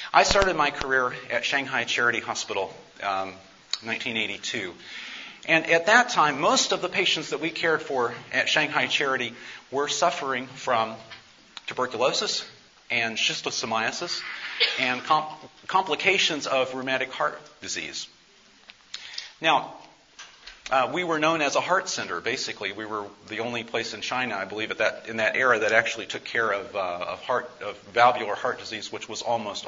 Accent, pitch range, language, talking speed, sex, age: American, 110-155 Hz, English, 155 wpm, male, 40-59